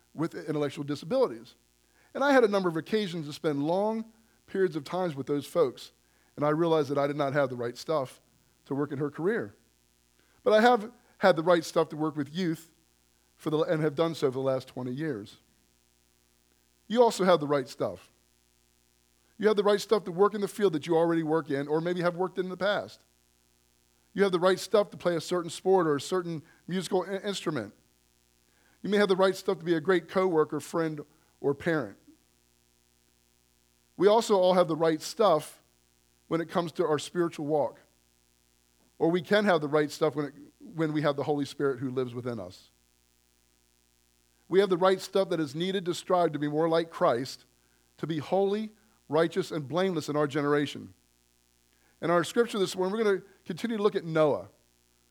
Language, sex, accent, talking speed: English, male, American, 200 wpm